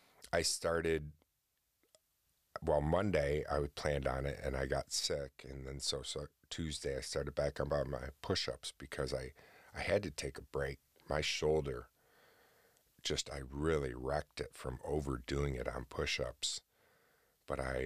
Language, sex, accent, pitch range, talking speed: English, male, American, 65-70 Hz, 150 wpm